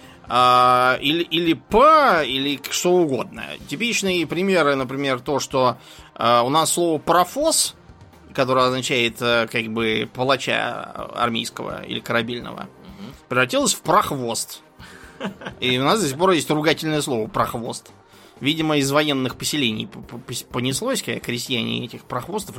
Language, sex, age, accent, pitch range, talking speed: Russian, male, 20-39, native, 125-165 Hz, 115 wpm